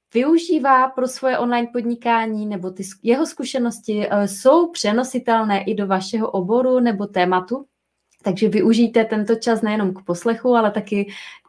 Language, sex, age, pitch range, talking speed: Czech, female, 20-39, 200-250 Hz, 135 wpm